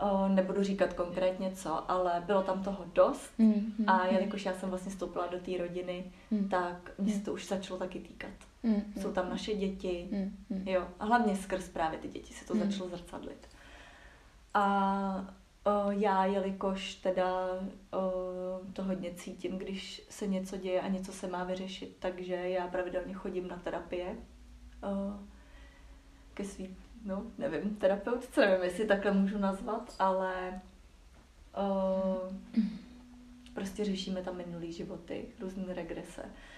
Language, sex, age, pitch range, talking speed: Czech, female, 20-39, 180-195 Hz, 135 wpm